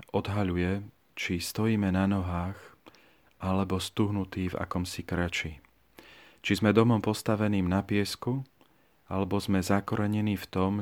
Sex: male